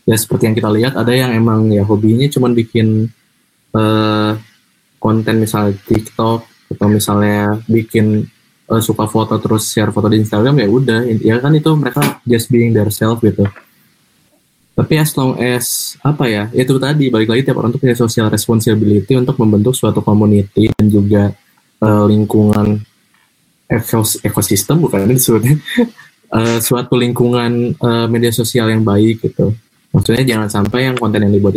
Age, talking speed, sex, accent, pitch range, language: 20-39, 155 wpm, male, native, 105-120 Hz, Indonesian